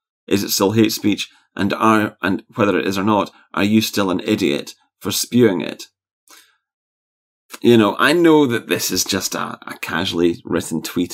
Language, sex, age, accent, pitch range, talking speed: English, male, 30-49, British, 100-120 Hz, 185 wpm